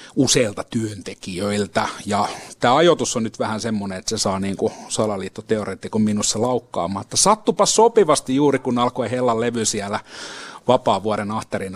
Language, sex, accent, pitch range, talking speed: Finnish, male, native, 105-125 Hz, 140 wpm